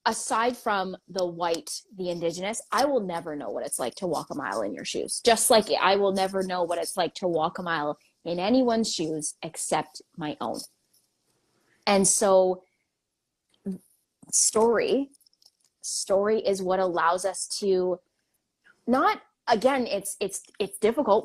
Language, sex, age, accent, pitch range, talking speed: English, female, 20-39, American, 180-220 Hz, 150 wpm